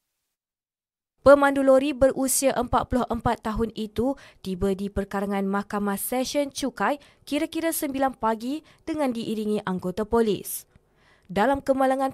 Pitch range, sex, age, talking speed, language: 205-255 Hz, female, 20-39, 105 wpm, Malay